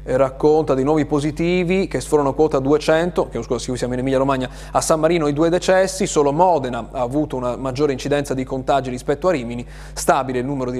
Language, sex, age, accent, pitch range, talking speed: Italian, male, 30-49, native, 125-155 Hz, 200 wpm